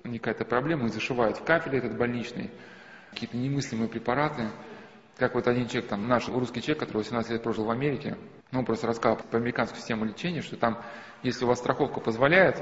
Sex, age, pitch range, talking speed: male, 20-39, 115-140 Hz, 190 wpm